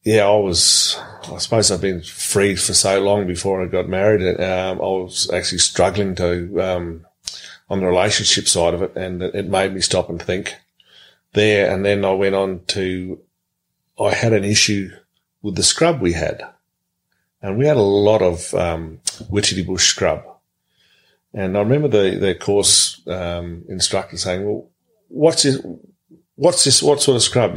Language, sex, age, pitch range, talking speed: English, male, 40-59, 90-110 Hz, 170 wpm